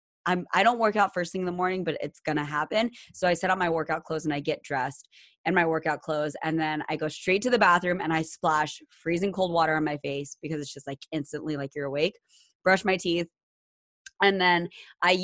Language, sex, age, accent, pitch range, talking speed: English, female, 20-39, American, 155-190 Hz, 235 wpm